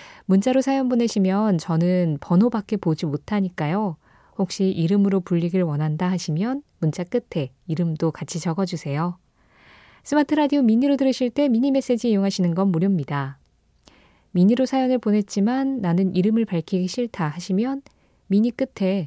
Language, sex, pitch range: Korean, female, 165-240 Hz